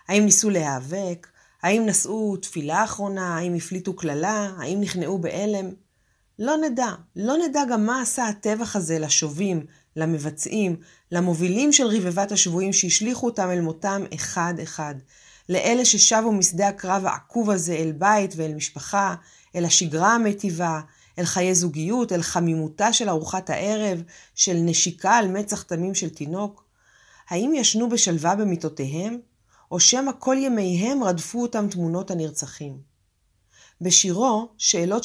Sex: female